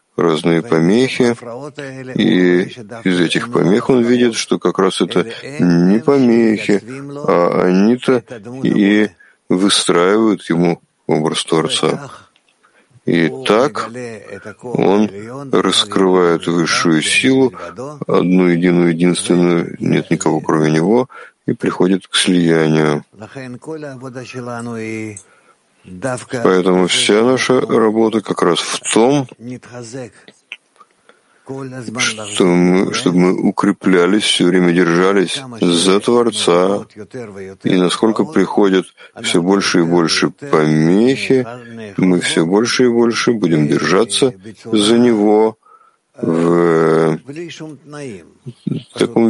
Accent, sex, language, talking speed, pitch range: native, male, Russian, 90 wpm, 90-125 Hz